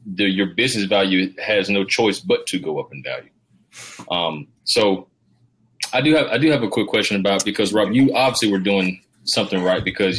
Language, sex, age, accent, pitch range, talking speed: English, male, 20-39, American, 95-110 Hz, 200 wpm